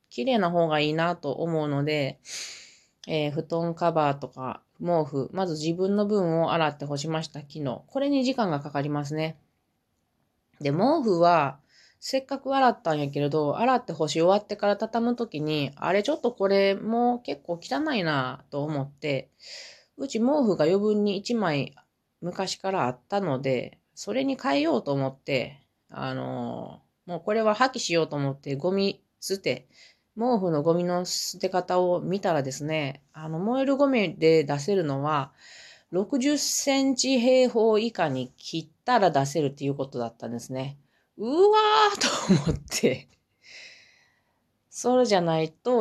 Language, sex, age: Japanese, female, 20-39